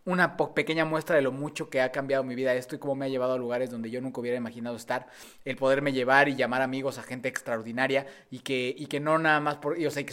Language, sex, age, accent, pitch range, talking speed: Spanish, male, 20-39, Mexican, 120-140 Hz, 280 wpm